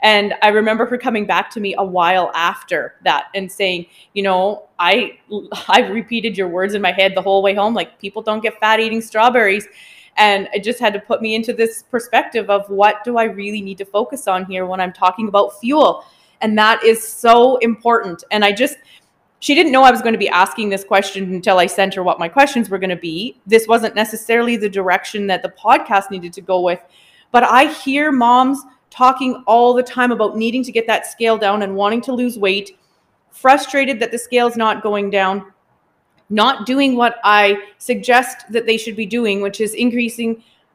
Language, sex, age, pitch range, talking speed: English, female, 20-39, 200-235 Hz, 210 wpm